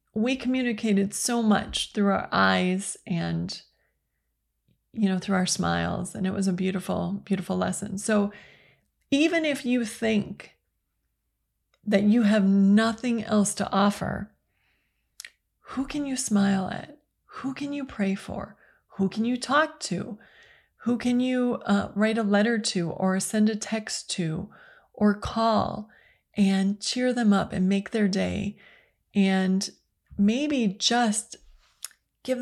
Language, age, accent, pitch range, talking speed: English, 30-49, American, 185-225 Hz, 135 wpm